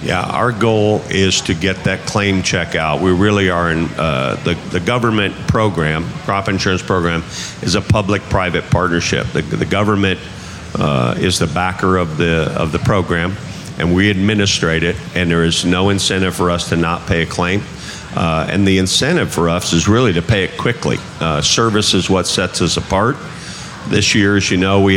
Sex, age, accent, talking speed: male, 50-69, American, 190 wpm